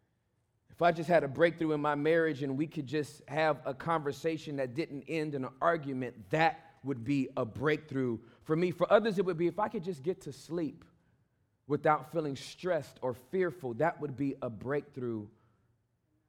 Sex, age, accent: male, 40-59, American